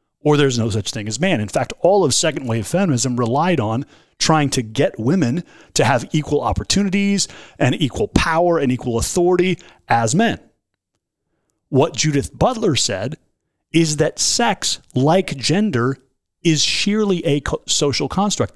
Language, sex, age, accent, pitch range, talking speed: English, male, 30-49, American, 125-165 Hz, 150 wpm